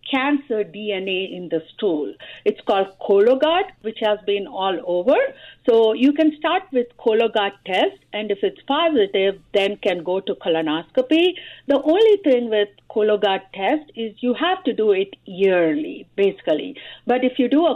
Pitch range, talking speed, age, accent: 195-250 Hz, 160 wpm, 50-69, Indian